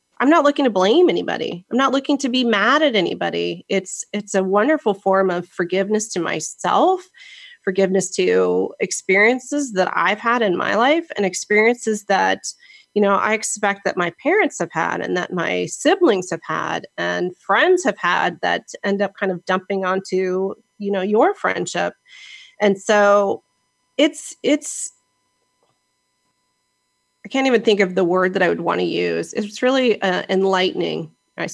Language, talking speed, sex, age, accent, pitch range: English, 165 wpm, female, 30-49, American, 185-245 Hz